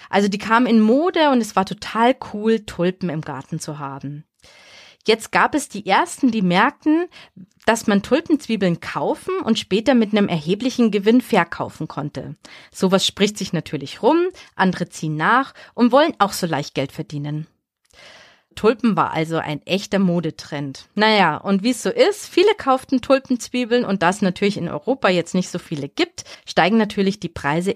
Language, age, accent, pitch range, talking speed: German, 30-49, German, 170-235 Hz, 170 wpm